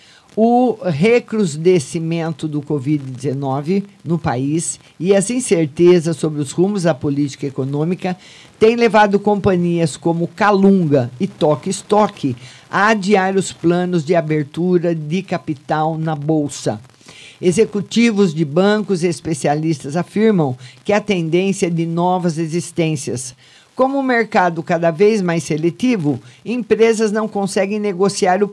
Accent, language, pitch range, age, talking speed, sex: Brazilian, Portuguese, 160-200 Hz, 50-69, 120 wpm, male